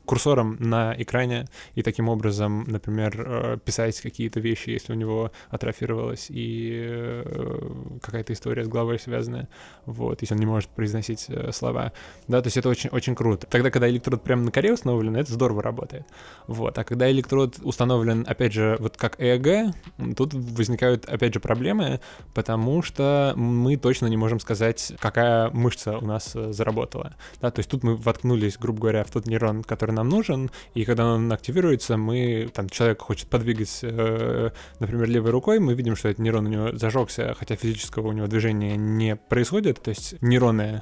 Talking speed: 170 wpm